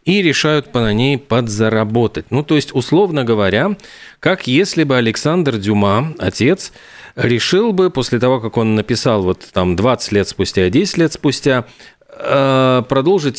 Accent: native